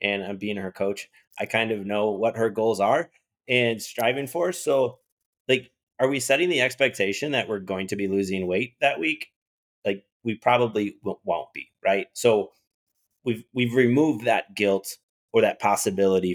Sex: male